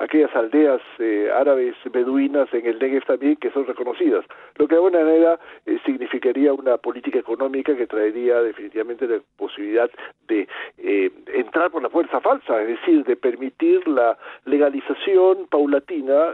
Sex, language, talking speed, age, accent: male, Spanish, 145 wpm, 50-69, Argentinian